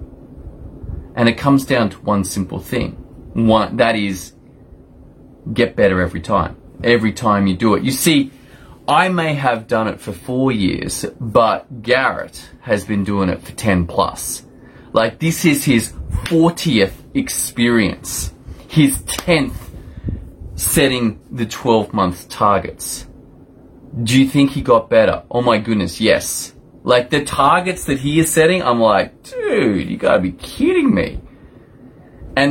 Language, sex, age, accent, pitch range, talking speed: English, male, 30-49, Australian, 100-145 Hz, 145 wpm